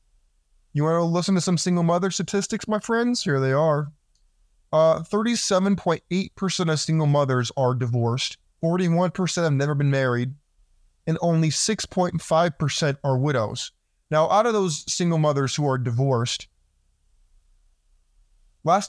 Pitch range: 115-165 Hz